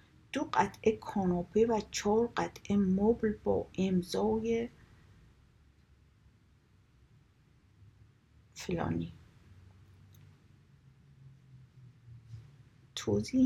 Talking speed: 50 wpm